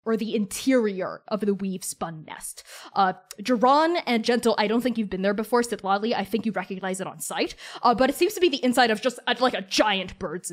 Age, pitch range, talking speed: 20-39, 205-255 Hz, 235 wpm